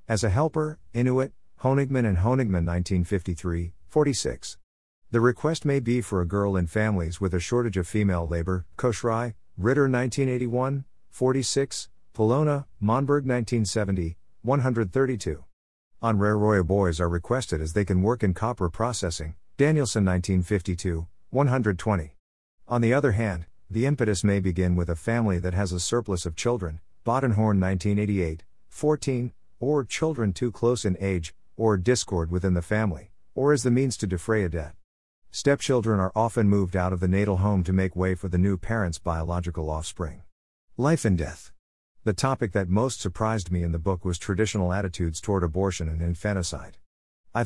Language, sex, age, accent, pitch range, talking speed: English, male, 50-69, American, 90-115 Hz, 155 wpm